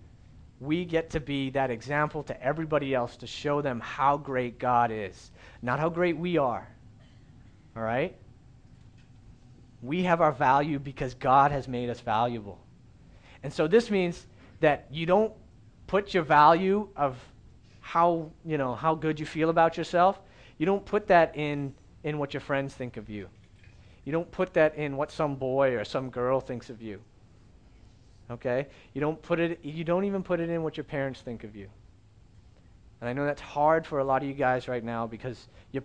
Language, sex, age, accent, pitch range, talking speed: English, male, 40-59, American, 120-150 Hz, 185 wpm